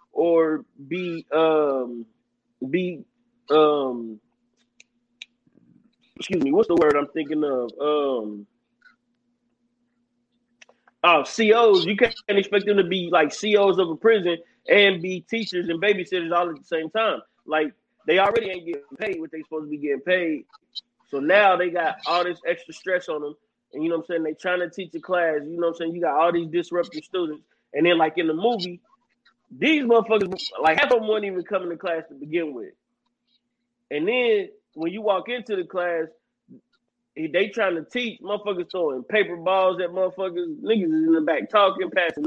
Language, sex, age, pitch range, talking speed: English, male, 30-49, 170-235 Hz, 185 wpm